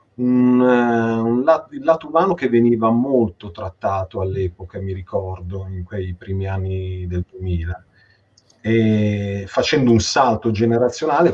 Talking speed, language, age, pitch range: 115 wpm, Italian, 40-59, 100-125 Hz